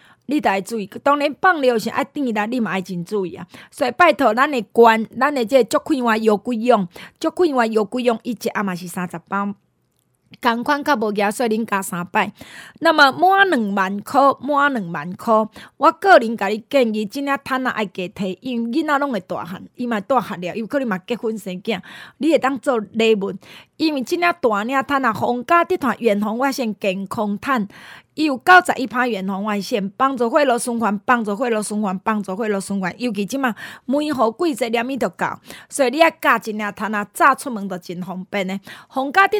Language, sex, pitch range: Chinese, female, 205-275 Hz